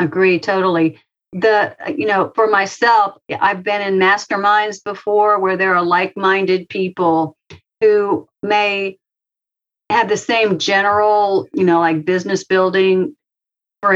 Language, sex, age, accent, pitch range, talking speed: English, female, 50-69, American, 175-210 Hz, 125 wpm